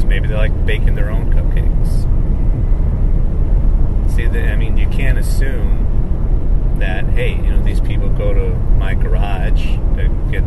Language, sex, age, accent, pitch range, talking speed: English, male, 30-49, American, 75-100 Hz, 145 wpm